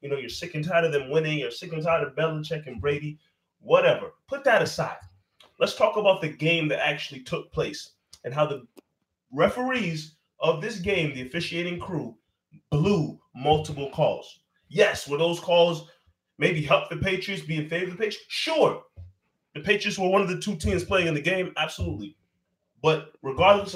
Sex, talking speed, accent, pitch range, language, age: male, 185 wpm, American, 145-180 Hz, English, 20-39